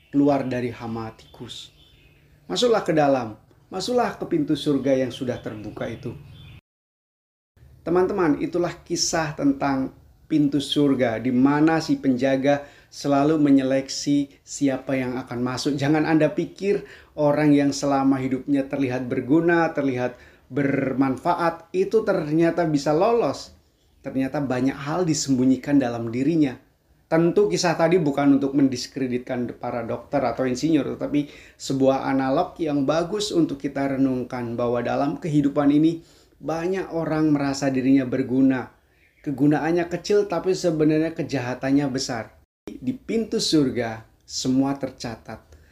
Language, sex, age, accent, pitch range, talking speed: Indonesian, male, 30-49, native, 130-155 Hz, 120 wpm